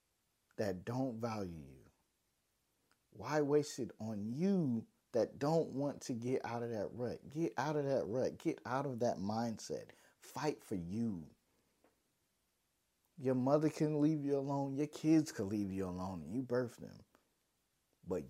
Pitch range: 95-130 Hz